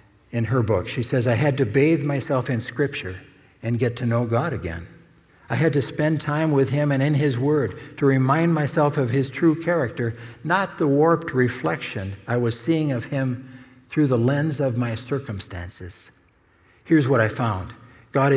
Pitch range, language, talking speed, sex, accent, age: 115-145 Hz, English, 185 wpm, male, American, 60-79